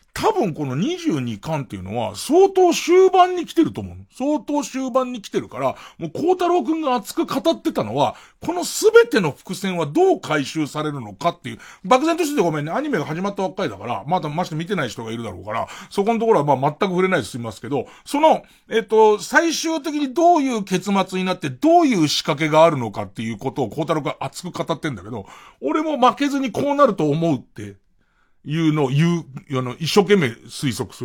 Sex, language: male, Japanese